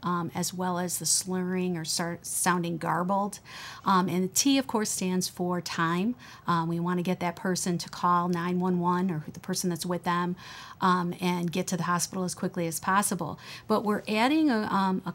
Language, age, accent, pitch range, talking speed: English, 50-69, American, 175-195 Hz, 210 wpm